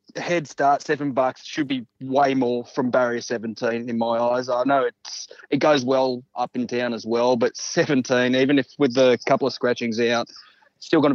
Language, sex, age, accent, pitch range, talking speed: English, male, 20-39, Australian, 125-150 Hz, 200 wpm